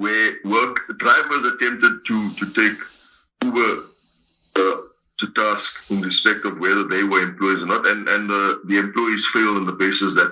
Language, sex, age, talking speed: English, male, 60-79, 170 wpm